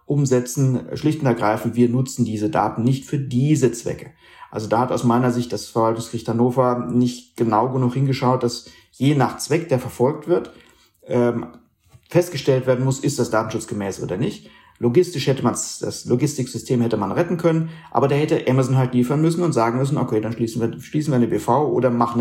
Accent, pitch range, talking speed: German, 115-135 Hz, 190 wpm